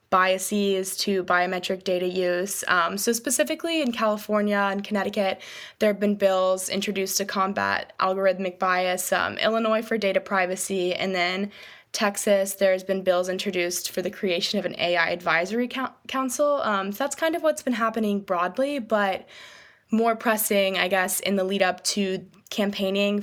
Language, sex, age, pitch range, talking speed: English, female, 10-29, 185-210 Hz, 160 wpm